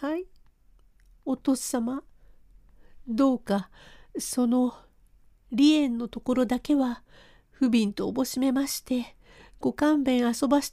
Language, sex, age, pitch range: Japanese, female, 50-69, 230-270 Hz